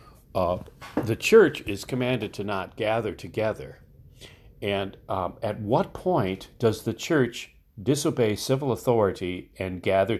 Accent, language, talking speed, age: American, English, 130 wpm, 40-59